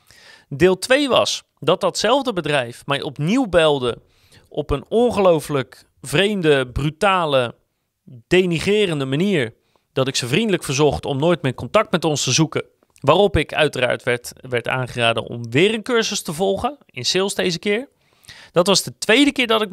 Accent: Dutch